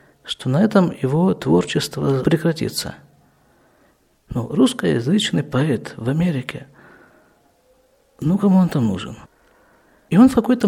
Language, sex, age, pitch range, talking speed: Russian, male, 50-69, 140-200 Hz, 110 wpm